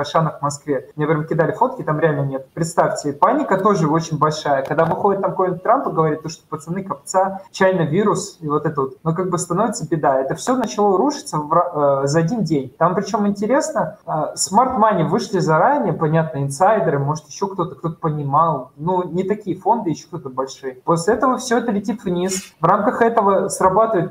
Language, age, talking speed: Russian, 20-39, 185 wpm